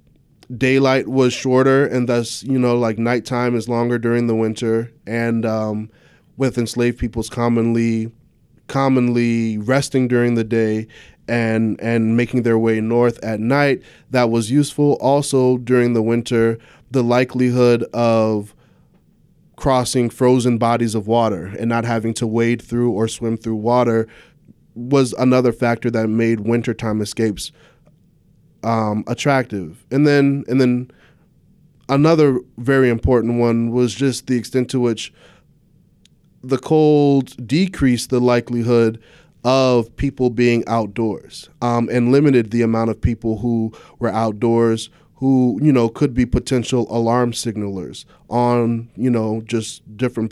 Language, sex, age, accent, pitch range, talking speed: English, male, 20-39, American, 115-130 Hz, 135 wpm